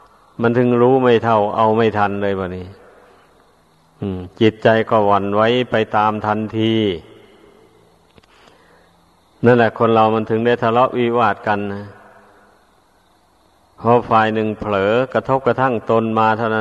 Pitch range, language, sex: 105-120 Hz, Thai, male